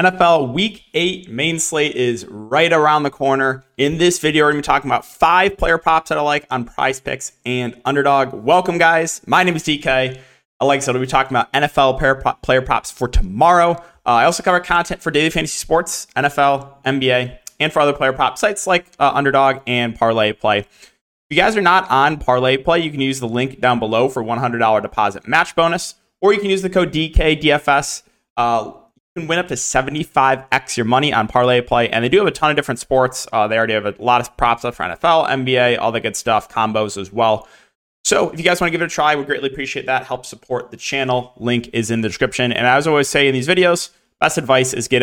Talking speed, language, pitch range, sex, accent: 235 wpm, English, 120-160 Hz, male, American